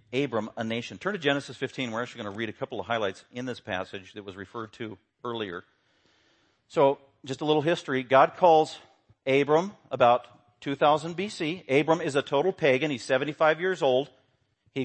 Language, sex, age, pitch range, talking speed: English, male, 40-59, 125-160 Hz, 180 wpm